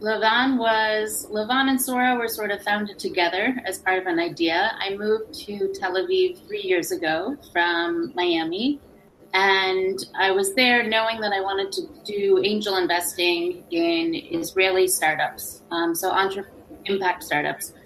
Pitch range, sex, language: 180-225 Hz, female, English